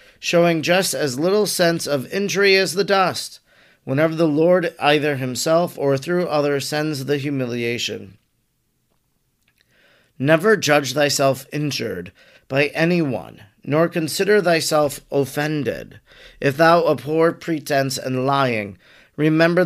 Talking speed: 115 wpm